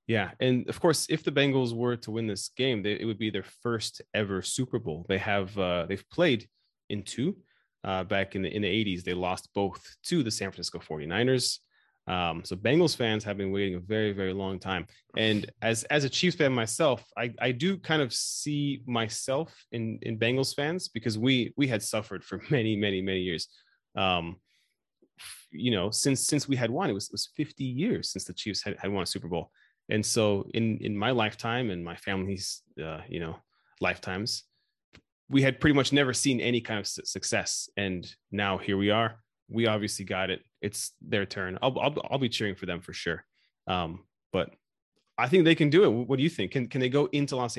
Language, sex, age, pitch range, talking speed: English, male, 20-39, 100-125 Hz, 210 wpm